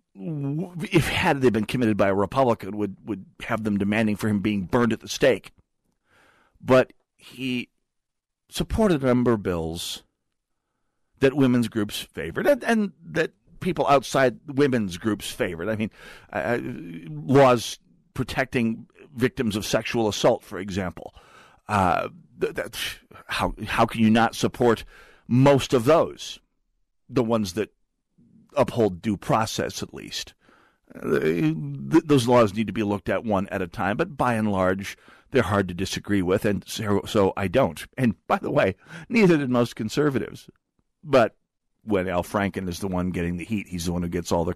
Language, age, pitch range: English, 50-69, 100-140 Hz